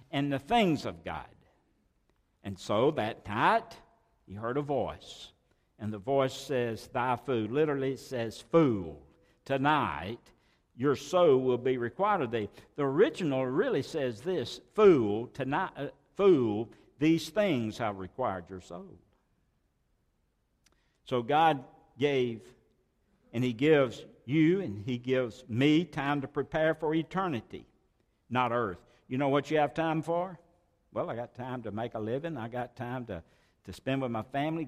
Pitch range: 110-150 Hz